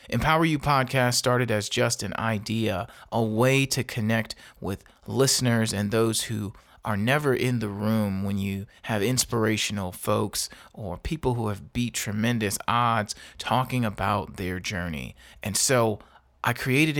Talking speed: 150 wpm